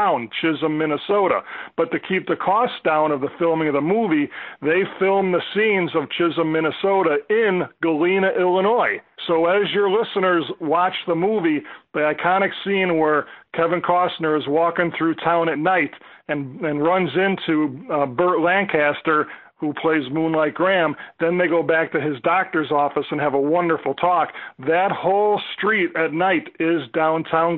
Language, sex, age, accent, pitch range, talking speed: English, male, 40-59, American, 155-185 Hz, 160 wpm